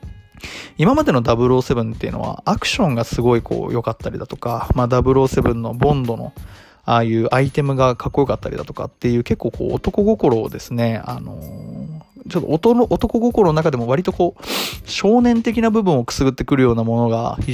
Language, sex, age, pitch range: Japanese, male, 20-39, 115-165 Hz